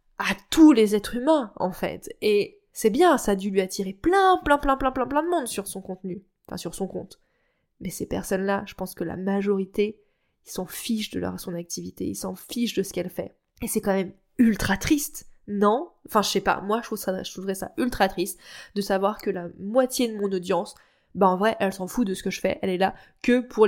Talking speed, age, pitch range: 245 wpm, 20-39, 190-230 Hz